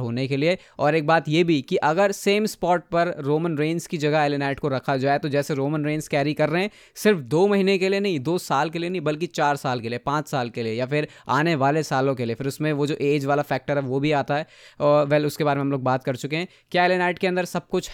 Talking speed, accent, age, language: 280 wpm, native, 20-39, Hindi